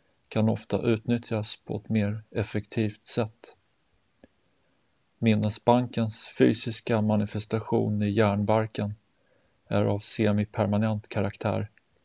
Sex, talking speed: male, 85 wpm